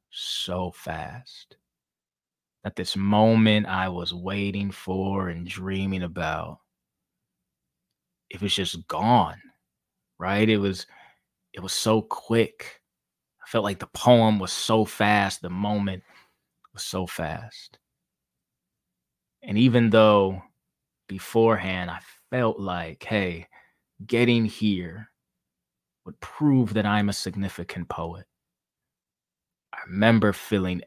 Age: 20-39